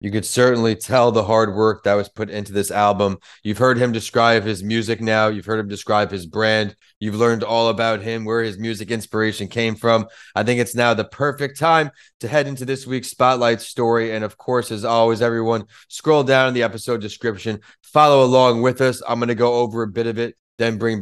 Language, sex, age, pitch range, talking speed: English, male, 20-39, 105-130 Hz, 225 wpm